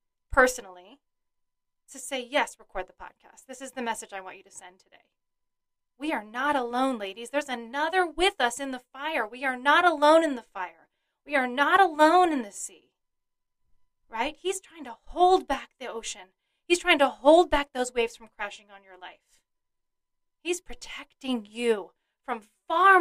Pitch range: 210-290 Hz